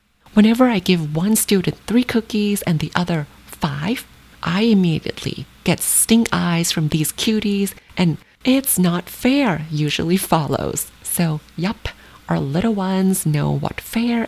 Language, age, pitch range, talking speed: English, 30-49, 170-210 Hz, 140 wpm